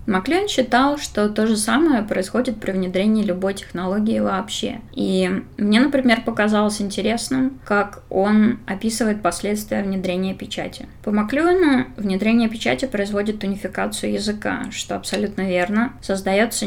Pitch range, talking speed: 190-230 Hz, 120 wpm